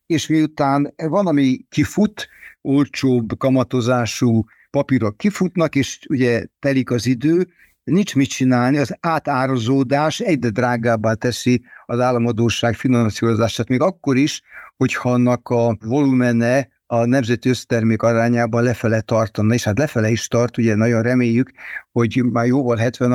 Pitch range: 120-140 Hz